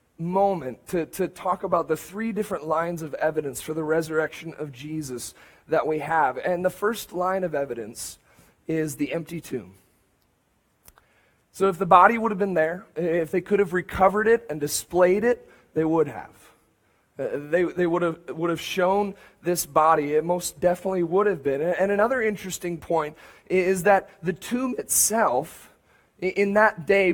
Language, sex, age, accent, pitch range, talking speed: English, male, 30-49, American, 155-195 Hz, 170 wpm